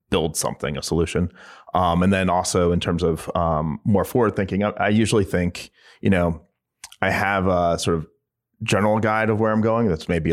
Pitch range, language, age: 85-100 Hz, English, 30-49